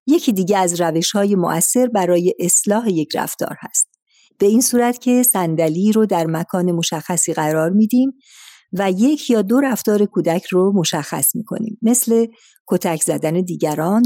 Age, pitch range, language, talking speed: 50-69, 170-235 Hz, Persian, 145 wpm